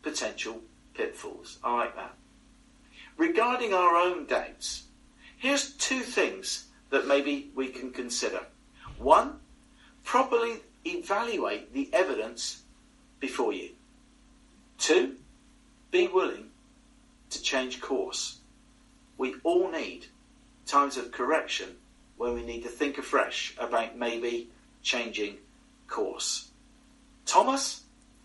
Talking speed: 100 wpm